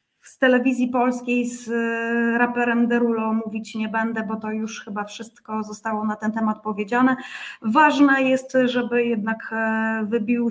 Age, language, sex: 20-39, Polish, female